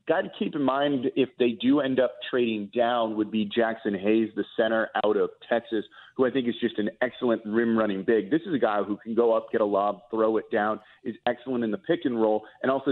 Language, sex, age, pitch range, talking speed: English, male, 30-49, 105-125 Hz, 245 wpm